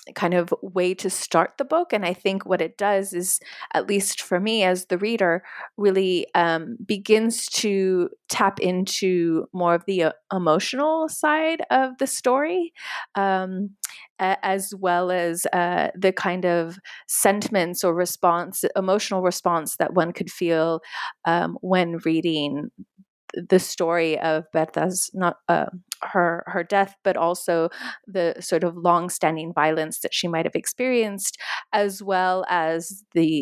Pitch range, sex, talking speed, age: 170-200 Hz, female, 145 wpm, 30-49